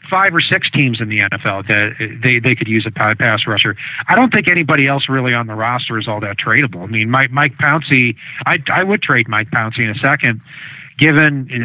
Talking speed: 220 wpm